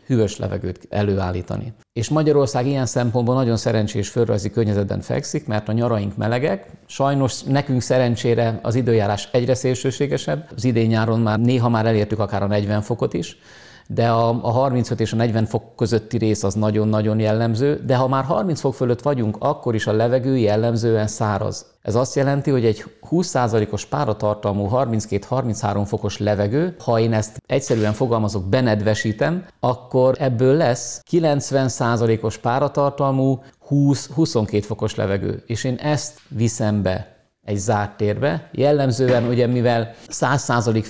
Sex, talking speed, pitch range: male, 140 wpm, 105-130 Hz